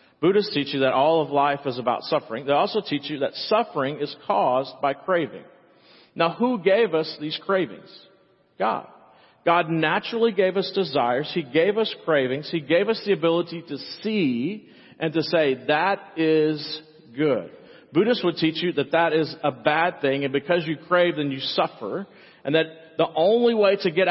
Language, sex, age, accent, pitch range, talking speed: English, male, 40-59, American, 140-185 Hz, 180 wpm